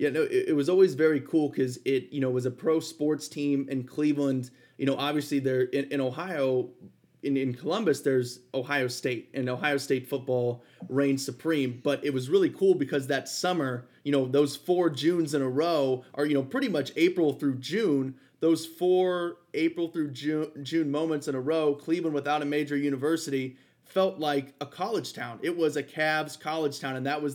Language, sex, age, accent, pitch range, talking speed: English, male, 30-49, American, 135-150 Hz, 195 wpm